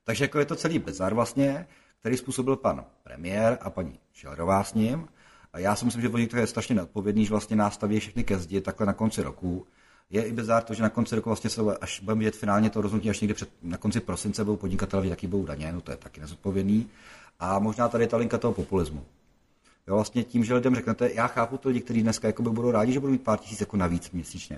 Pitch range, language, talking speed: 95-120 Hz, Czech, 235 wpm